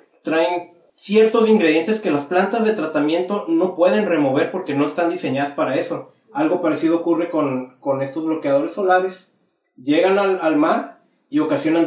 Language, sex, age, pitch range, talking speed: Spanish, male, 30-49, 160-220 Hz, 155 wpm